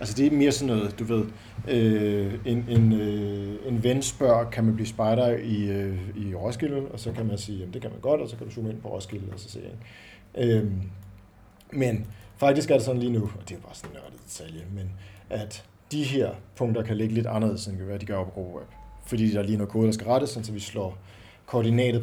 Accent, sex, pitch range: native, male, 100-120 Hz